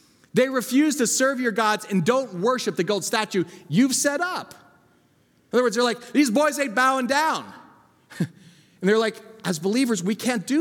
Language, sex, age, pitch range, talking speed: English, male, 30-49, 165-235 Hz, 185 wpm